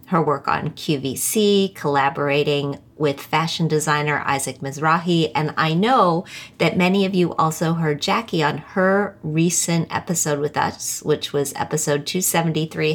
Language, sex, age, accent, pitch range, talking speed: English, female, 30-49, American, 155-190 Hz, 140 wpm